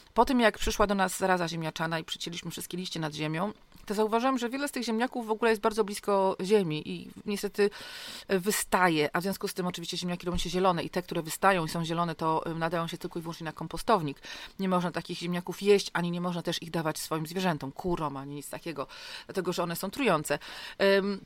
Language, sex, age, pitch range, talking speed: Polish, female, 30-49, 165-205 Hz, 215 wpm